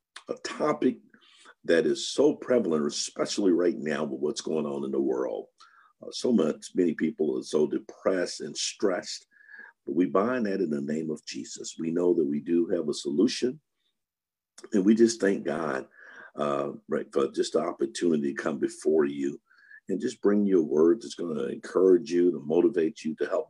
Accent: American